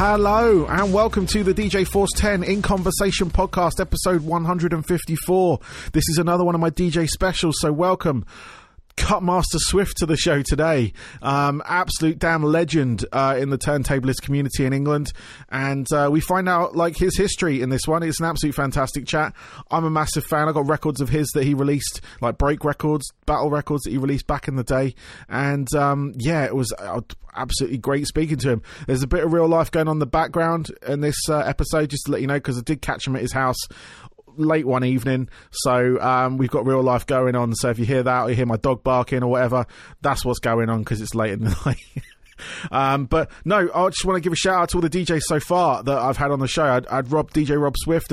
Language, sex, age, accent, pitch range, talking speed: English, male, 30-49, British, 130-160 Hz, 225 wpm